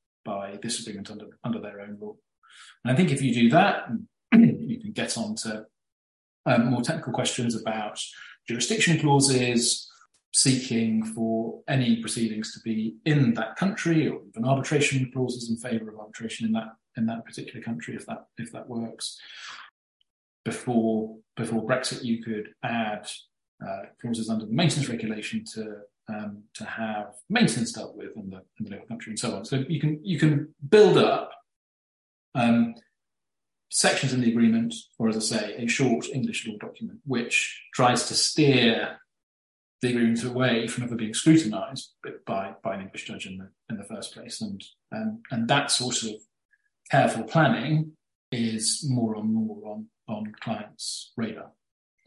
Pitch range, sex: 110-135 Hz, male